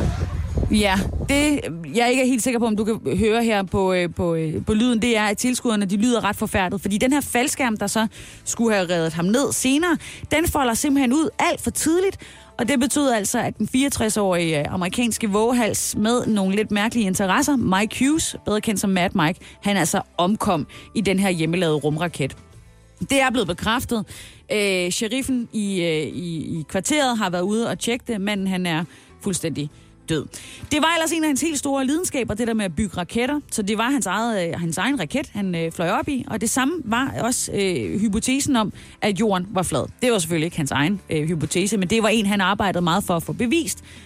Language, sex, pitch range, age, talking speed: Danish, female, 180-250 Hz, 30-49, 210 wpm